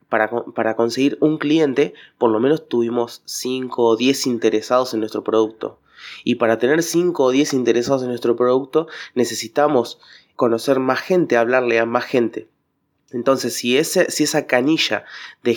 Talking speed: 150 wpm